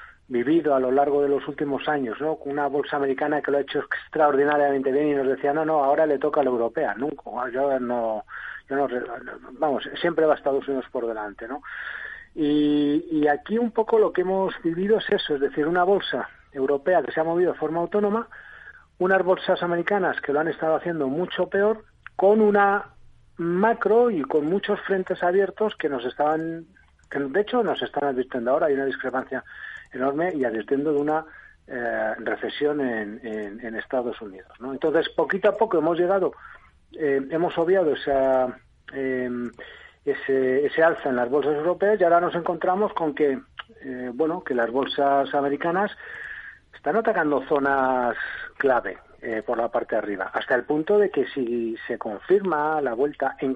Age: 40-59